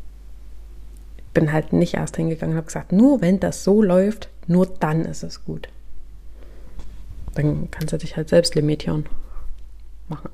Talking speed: 155 wpm